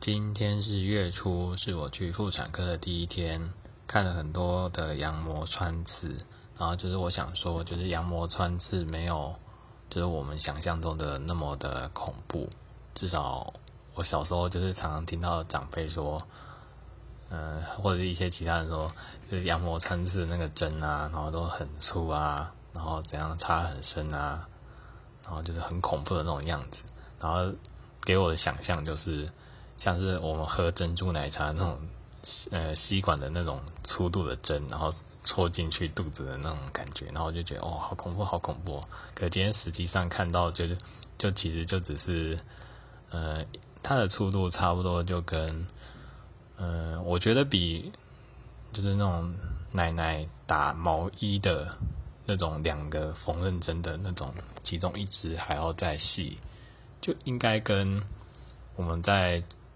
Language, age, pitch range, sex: English, 20-39, 80-95 Hz, male